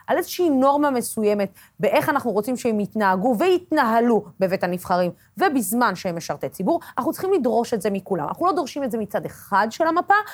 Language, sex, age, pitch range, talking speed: Hebrew, female, 30-49, 215-320 Hz, 180 wpm